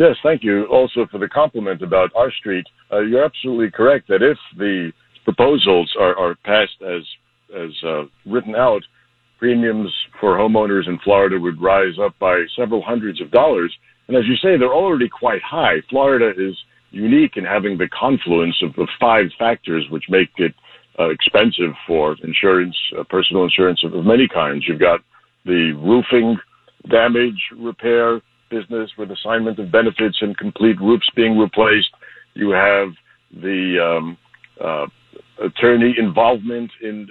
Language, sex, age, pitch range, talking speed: English, male, 60-79, 95-115 Hz, 155 wpm